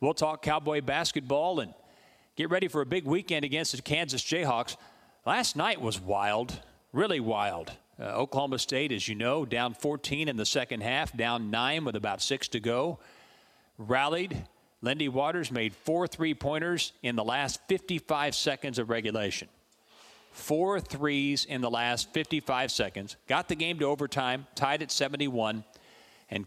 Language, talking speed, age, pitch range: English, 155 wpm, 40-59, 115-150 Hz